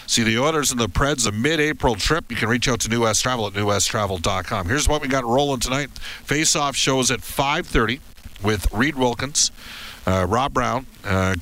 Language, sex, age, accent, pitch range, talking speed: English, male, 50-69, American, 100-135 Hz, 190 wpm